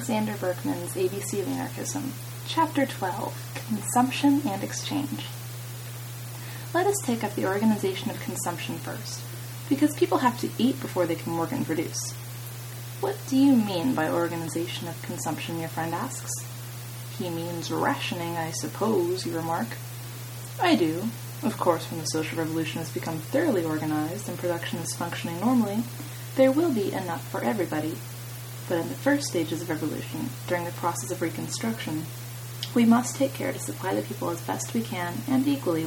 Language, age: English, 20-39